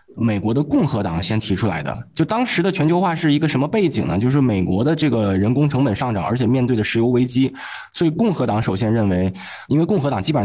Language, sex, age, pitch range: Chinese, male, 20-39, 105-150 Hz